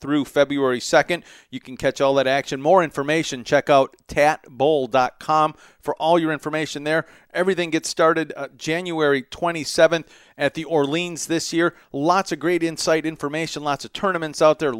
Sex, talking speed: male, 160 wpm